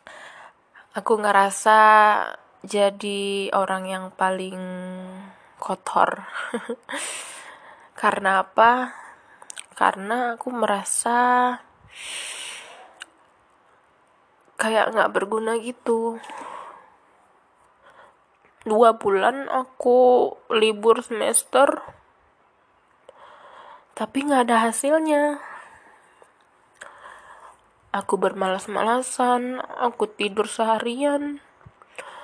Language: Indonesian